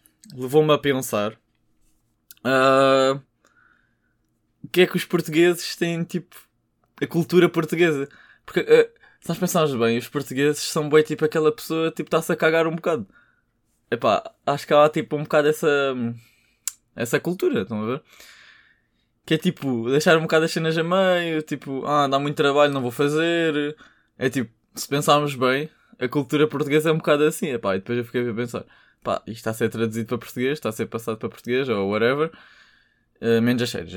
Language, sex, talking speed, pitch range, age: Portuguese, male, 180 wpm, 120-155 Hz, 20-39